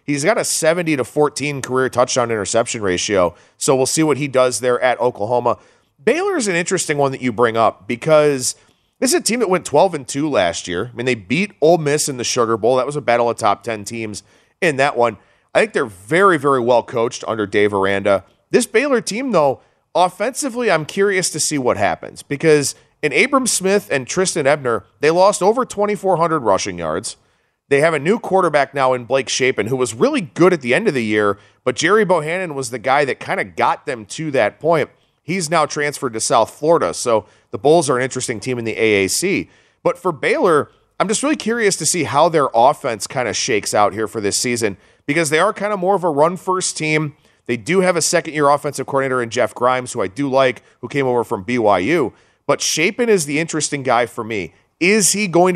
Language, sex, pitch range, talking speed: English, male, 120-180 Hz, 220 wpm